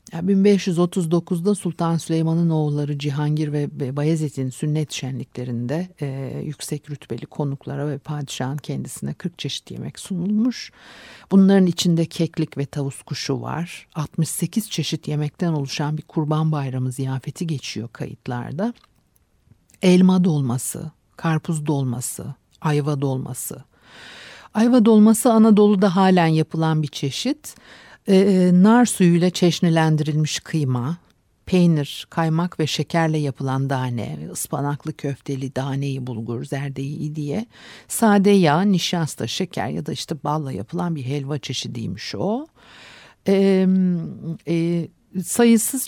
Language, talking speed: Turkish, 110 wpm